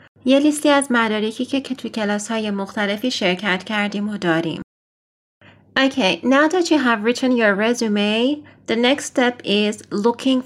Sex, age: female, 30-49